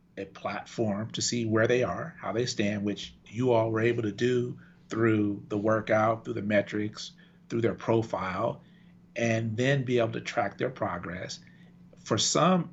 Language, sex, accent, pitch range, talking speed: English, male, American, 110-145 Hz, 170 wpm